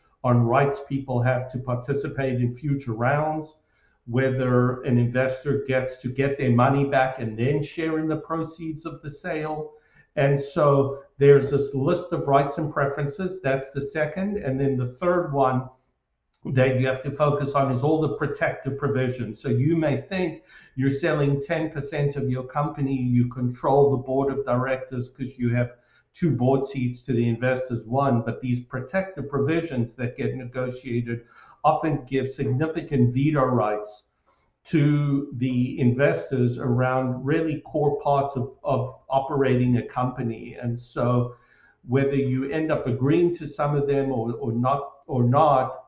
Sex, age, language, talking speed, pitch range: male, 50-69, English, 155 wpm, 125-145 Hz